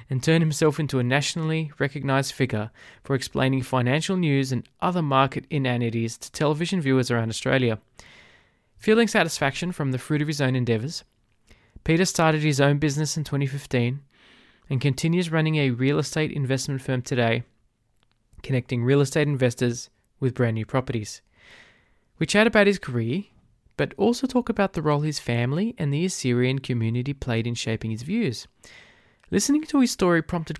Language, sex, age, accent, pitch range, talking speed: English, male, 20-39, Australian, 120-165 Hz, 160 wpm